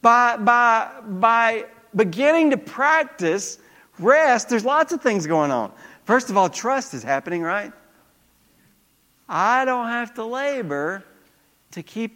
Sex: male